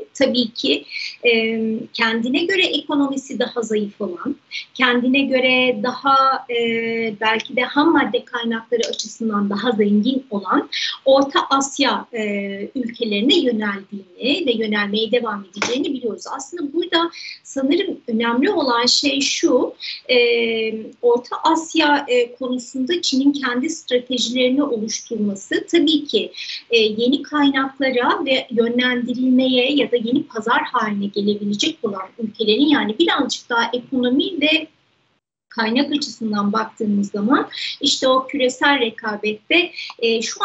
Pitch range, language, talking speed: 225-300 Hz, Turkish, 105 wpm